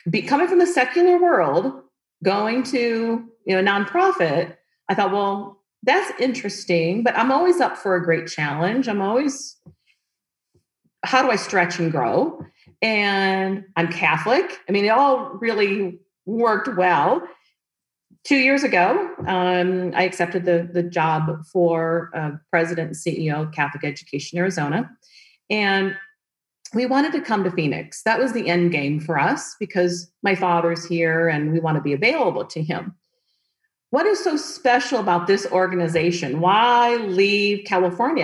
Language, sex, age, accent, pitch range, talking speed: English, female, 40-59, American, 170-225 Hz, 150 wpm